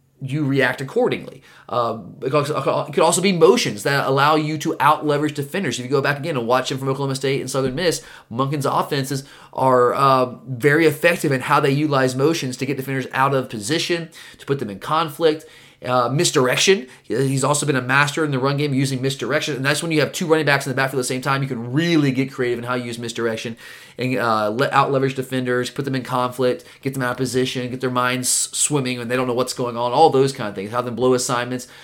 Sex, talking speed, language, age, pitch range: male, 235 wpm, English, 30-49, 125-150 Hz